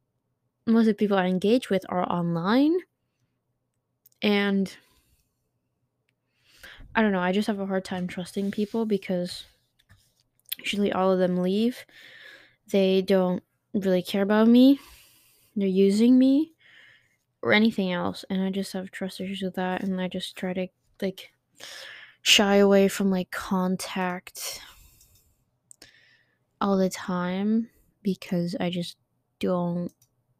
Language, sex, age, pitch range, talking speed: English, female, 10-29, 180-210 Hz, 130 wpm